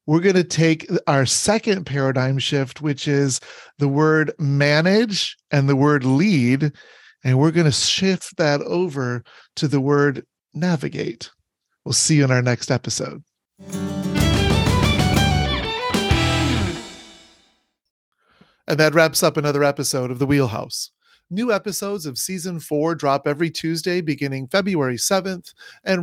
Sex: male